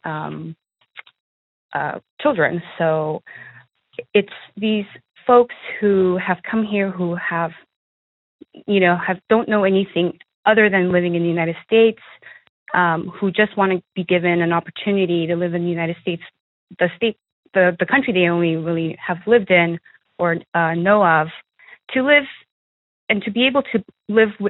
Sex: female